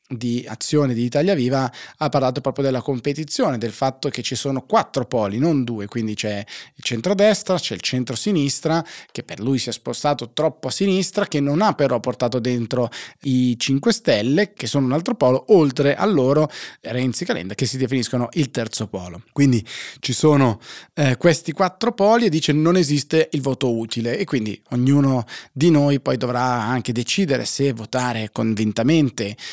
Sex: male